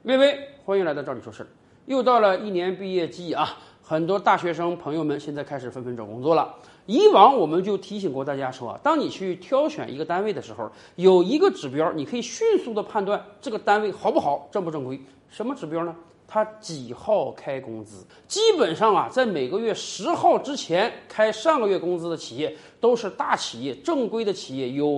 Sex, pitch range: male, 165-280 Hz